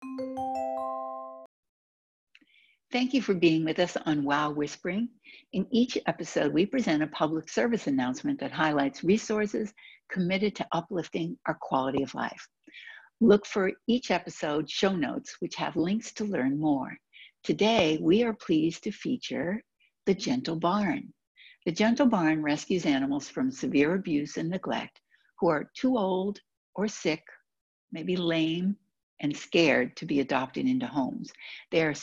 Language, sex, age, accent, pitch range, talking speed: English, female, 60-79, American, 155-235 Hz, 140 wpm